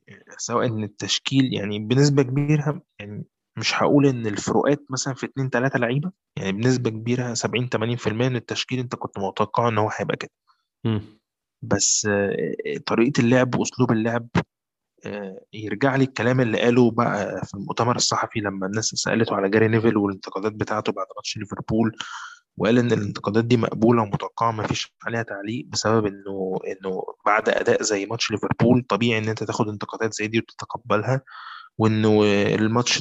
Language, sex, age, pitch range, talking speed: Arabic, male, 20-39, 105-125 Hz, 150 wpm